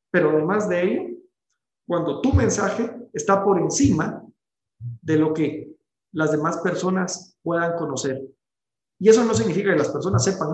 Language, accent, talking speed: Spanish, Mexican, 150 wpm